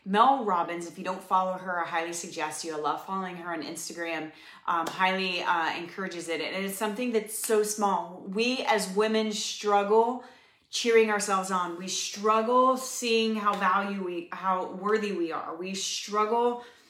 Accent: American